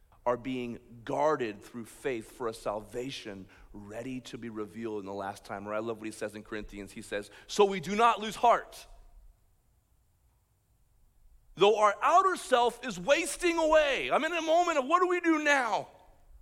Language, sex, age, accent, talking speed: English, male, 40-59, American, 180 wpm